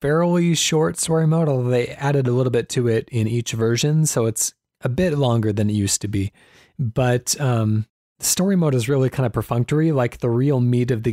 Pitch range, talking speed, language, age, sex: 115-145 Hz, 215 wpm, English, 30-49, male